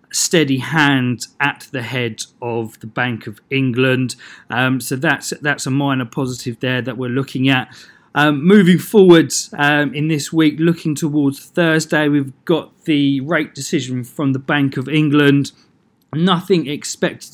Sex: male